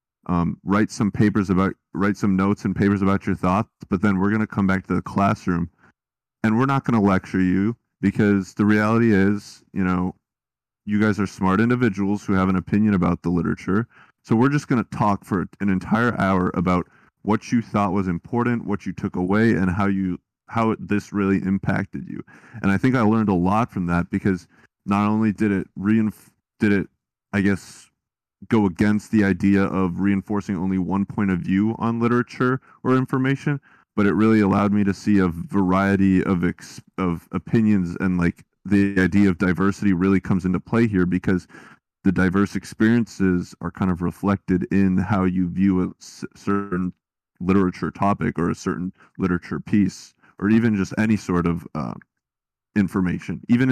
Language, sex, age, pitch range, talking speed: English, male, 30-49, 95-105 Hz, 185 wpm